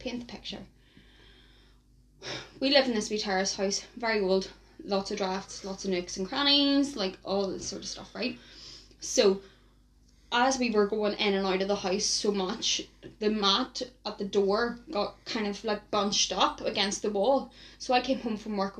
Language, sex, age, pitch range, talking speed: English, female, 10-29, 205-250 Hz, 190 wpm